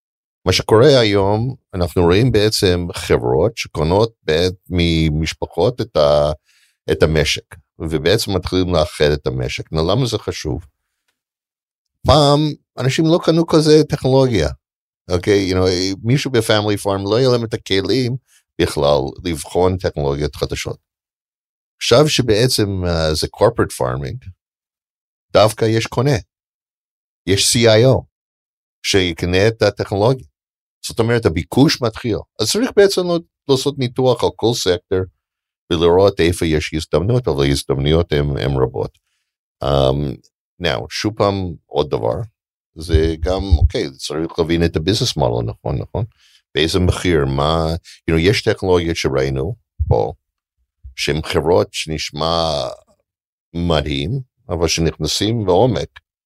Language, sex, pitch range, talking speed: Hebrew, male, 80-115 Hz, 115 wpm